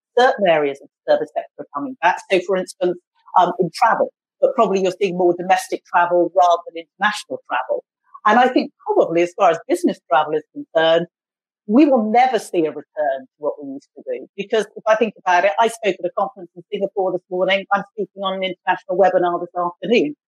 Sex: female